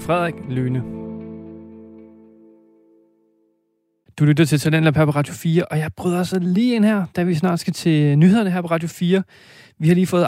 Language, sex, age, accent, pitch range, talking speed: Danish, male, 30-49, native, 130-175 Hz, 195 wpm